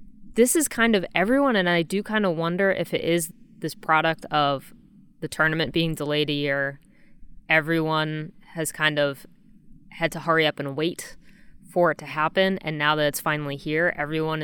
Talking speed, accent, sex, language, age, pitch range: 185 wpm, American, female, English, 20-39, 150-185 Hz